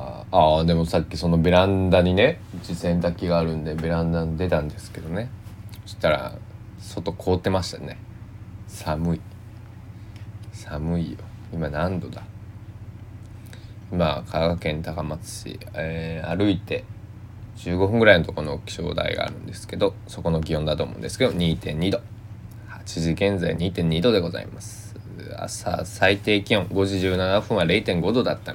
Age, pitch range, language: 20-39, 85-110 Hz, Japanese